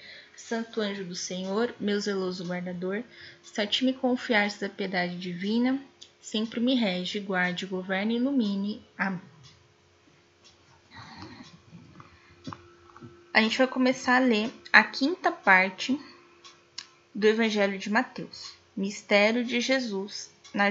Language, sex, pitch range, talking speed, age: Portuguese, female, 185-255 Hz, 115 wpm, 10-29